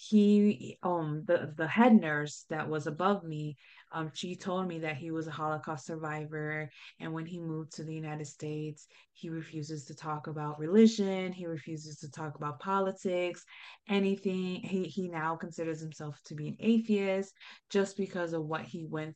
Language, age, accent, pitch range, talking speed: English, 20-39, American, 150-185 Hz, 175 wpm